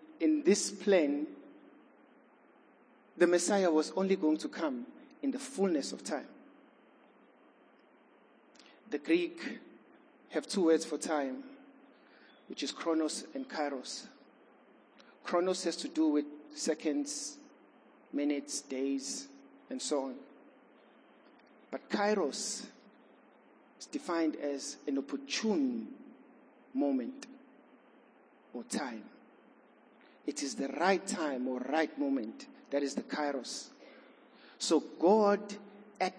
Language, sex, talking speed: English, male, 105 wpm